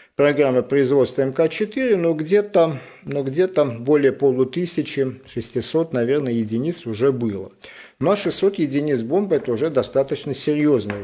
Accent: native